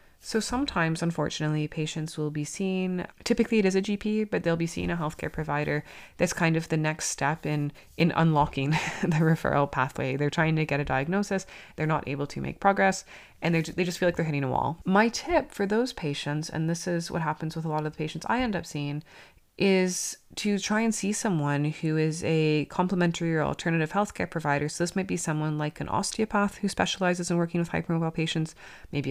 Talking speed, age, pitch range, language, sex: 210 wpm, 20-39, 150-190 Hz, English, female